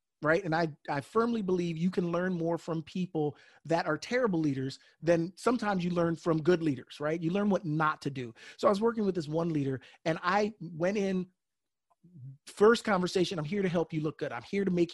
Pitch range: 160-200 Hz